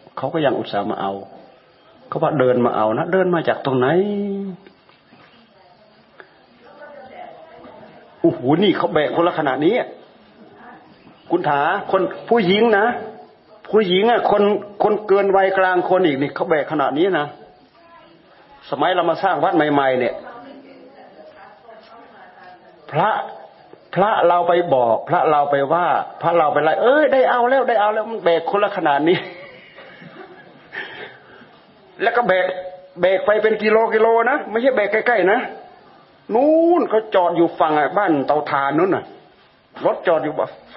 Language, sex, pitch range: Thai, male, 140-215 Hz